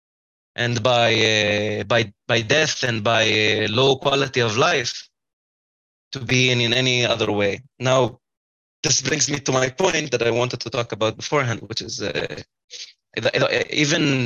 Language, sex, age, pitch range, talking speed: English, male, 20-39, 115-140 Hz, 160 wpm